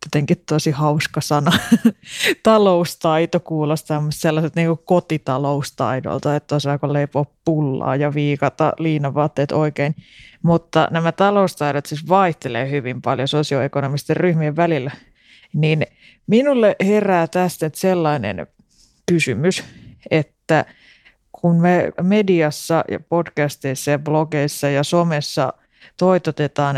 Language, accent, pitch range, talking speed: Finnish, native, 140-170 Hz, 100 wpm